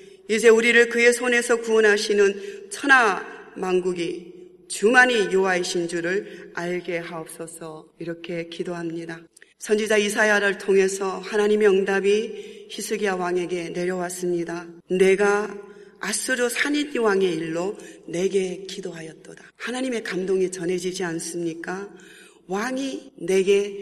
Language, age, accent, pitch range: Korean, 40-59, native, 180-215 Hz